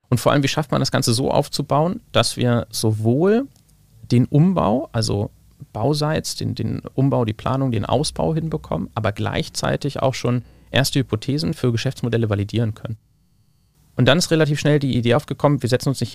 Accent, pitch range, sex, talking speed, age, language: German, 110-135 Hz, male, 175 wpm, 30-49, German